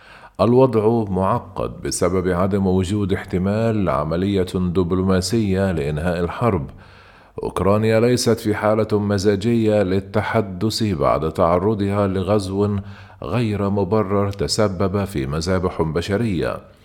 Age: 50-69